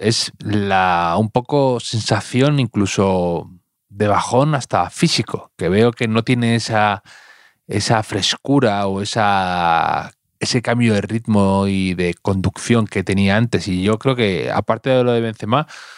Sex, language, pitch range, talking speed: male, Spanish, 95-125 Hz, 145 wpm